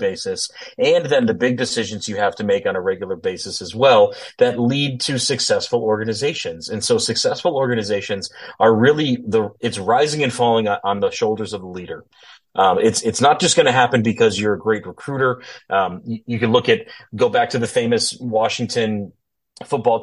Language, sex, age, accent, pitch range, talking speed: English, male, 30-49, American, 110-140 Hz, 190 wpm